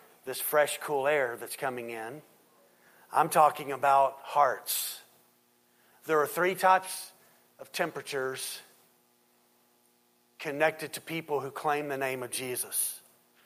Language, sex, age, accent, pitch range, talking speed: English, male, 40-59, American, 160-200 Hz, 115 wpm